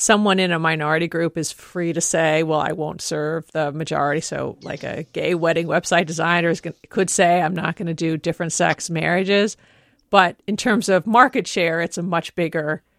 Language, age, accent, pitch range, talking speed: English, 40-59, American, 160-195 Hz, 205 wpm